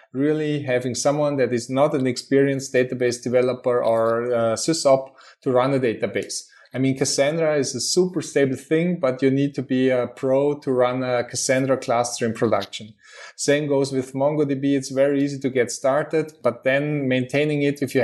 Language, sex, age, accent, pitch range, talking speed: English, male, 20-39, German, 125-140 Hz, 185 wpm